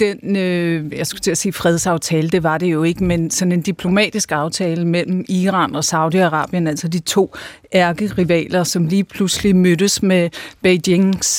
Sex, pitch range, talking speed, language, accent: female, 175-210 Hz, 170 wpm, Danish, native